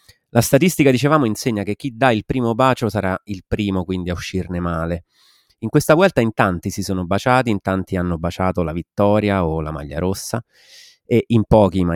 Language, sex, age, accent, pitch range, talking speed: Italian, male, 30-49, native, 90-115 Hz, 195 wpm